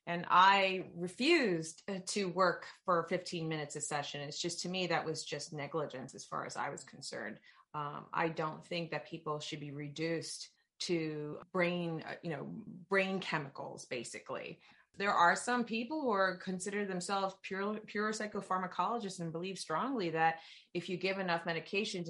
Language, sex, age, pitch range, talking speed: English, female, 30-49, 160-190 Hz, 165 wpm